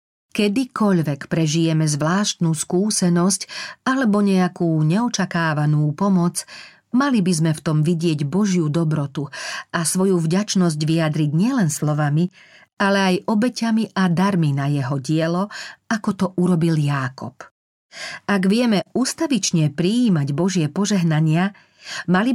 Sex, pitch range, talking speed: female, 155-195 Hz, 110 wpm